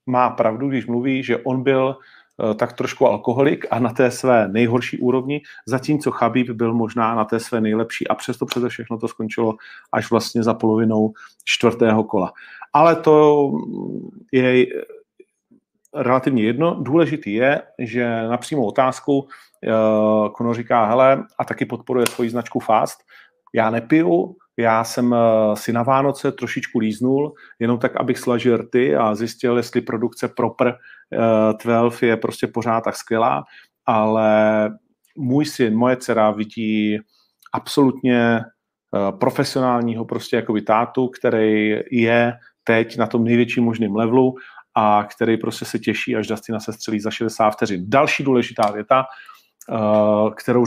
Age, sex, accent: 40-59, male, native